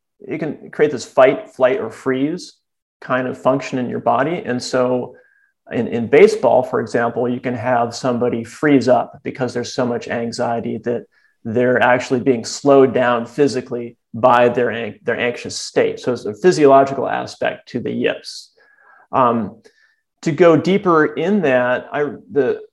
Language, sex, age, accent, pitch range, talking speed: English, male, 30-49, American, 125-150 Hz, 160 wpm